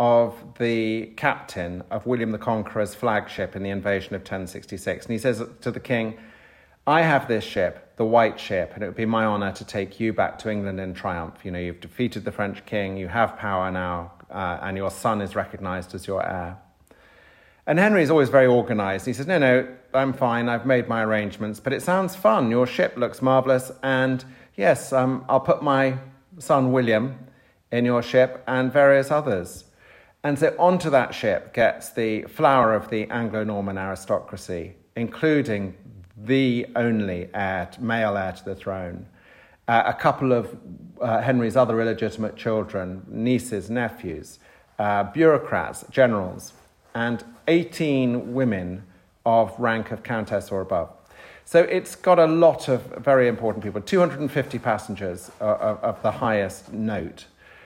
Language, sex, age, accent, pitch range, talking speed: English, male, 40-59, British, 100-130 Hz, 160 wpm